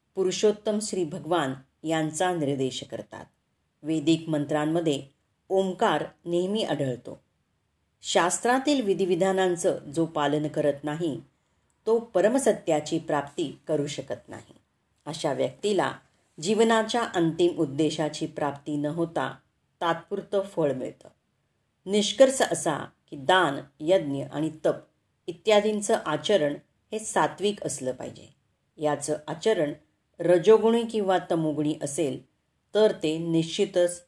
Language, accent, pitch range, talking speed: Marathi, native, 145-190 Hz, 100 wpm